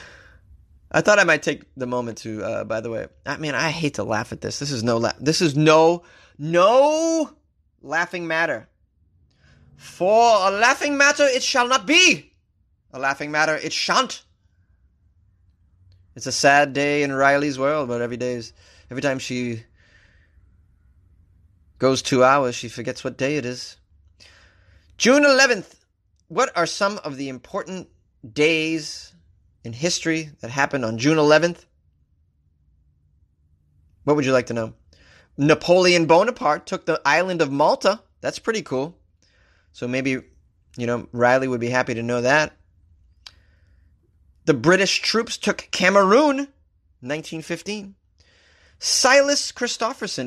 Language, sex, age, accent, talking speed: English, male, 30-49, American, 140 wpm